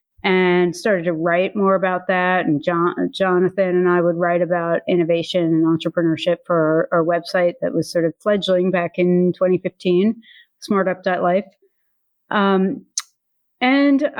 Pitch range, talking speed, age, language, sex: 180-230 Hz, 140 wpm, 30-49, English, female